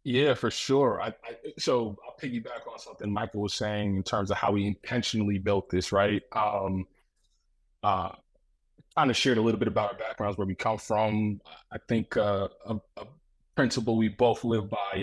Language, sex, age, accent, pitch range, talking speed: English, male, 20-39, American, 100-125 Hz, 190 wpm